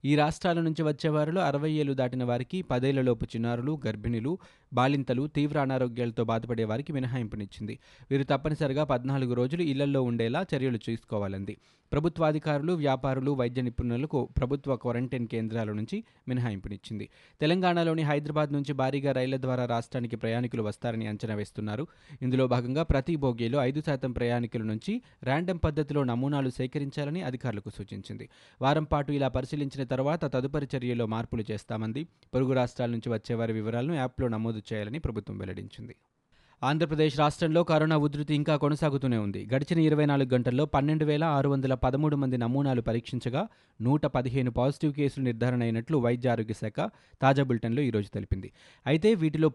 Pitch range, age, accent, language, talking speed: 120-150 Hz, 20-39, native, Telugu, 125 wpm